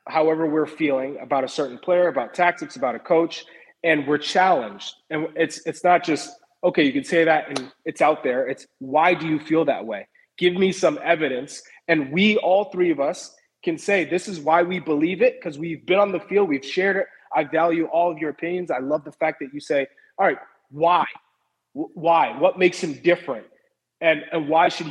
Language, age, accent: English, 30-49, American